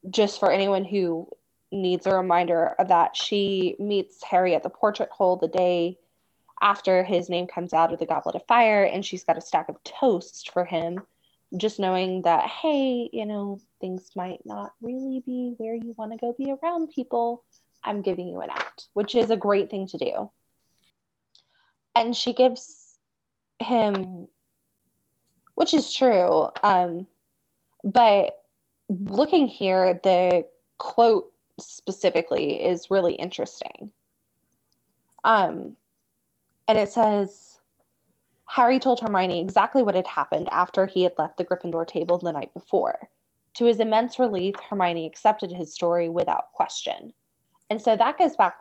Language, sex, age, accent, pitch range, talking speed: English, female, 20-39, American, 180-235 Hz, 150 wpm